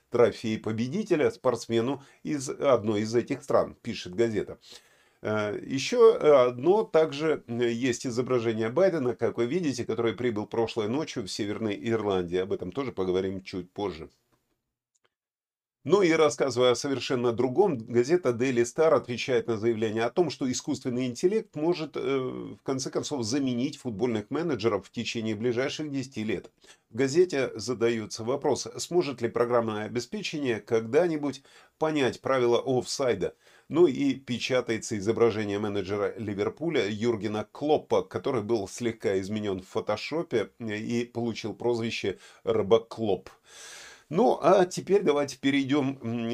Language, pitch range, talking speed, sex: Russian, 110-135 Hz, 125 wpm, male